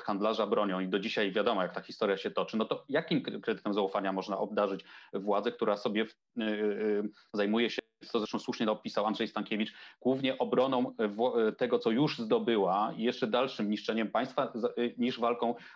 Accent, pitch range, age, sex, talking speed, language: Polish, 105-120 Hz, 30-49, male, 180 wpm, English